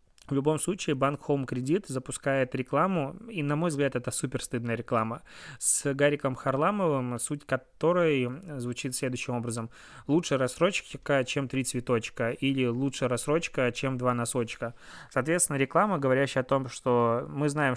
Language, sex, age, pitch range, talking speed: Russian, male, 20-39, 120-140 Hz, 145 wpm